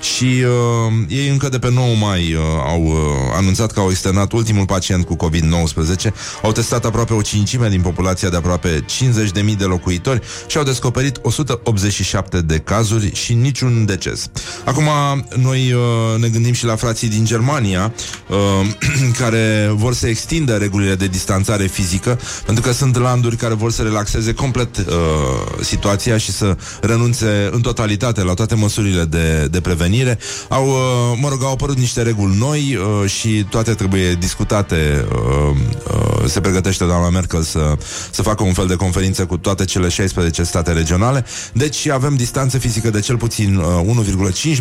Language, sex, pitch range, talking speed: Romanian, male, 95-120 Hz, 155 wpm